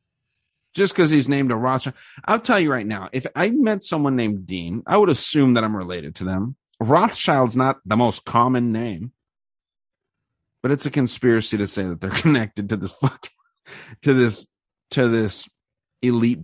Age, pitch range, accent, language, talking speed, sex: 40-59, 105-150 Hz, American, English, 175 wpm, male